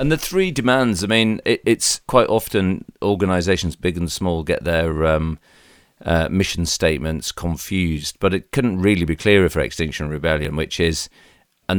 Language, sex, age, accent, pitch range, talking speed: English, male, 40-59, British, 80-95 Hz, 165 wpm